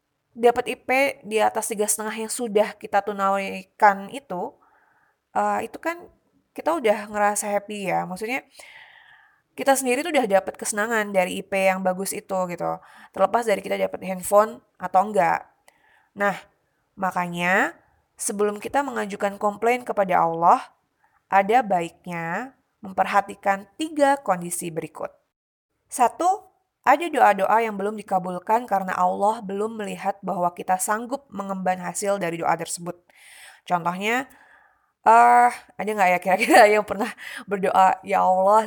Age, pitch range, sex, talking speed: 20-39, 185-230 Hz, female, 125 wpm